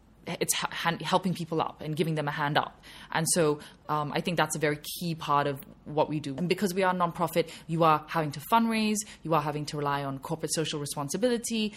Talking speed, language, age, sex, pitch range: 230 wpm, English, 20-39, female, 155-190 Hz